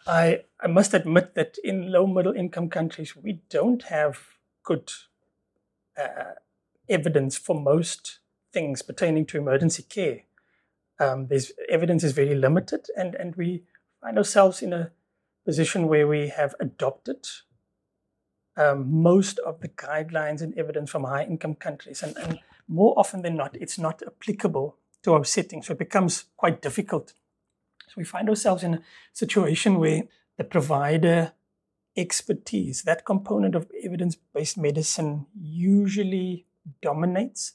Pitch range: 150-185 Hz